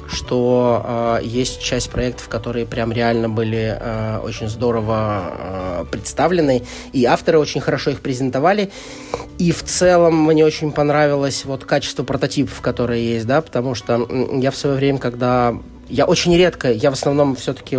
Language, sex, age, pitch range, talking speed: Russian, male, 20-39, 115-140 Hz, 155 wpm